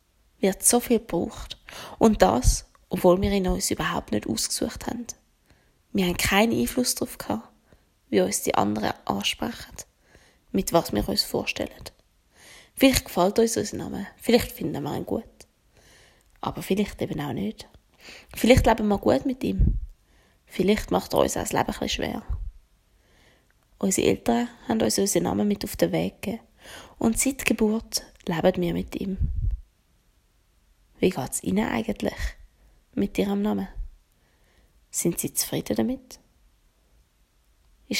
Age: 20-39